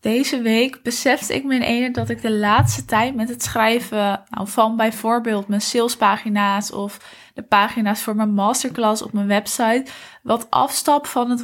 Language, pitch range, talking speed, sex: Dutch, 210-255 Hz, 175 wpm, female